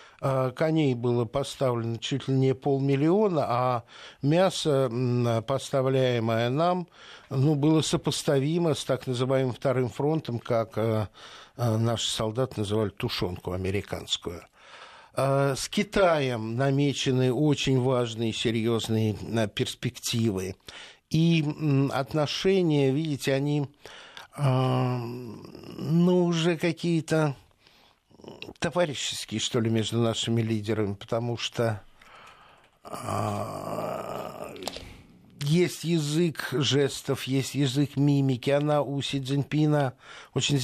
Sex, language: male, Russian